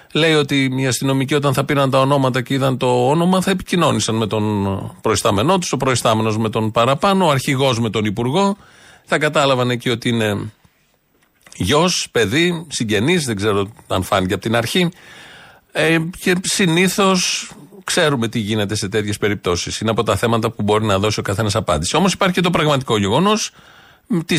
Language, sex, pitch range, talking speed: Greek, male, 110-150 Hz, 175 wpm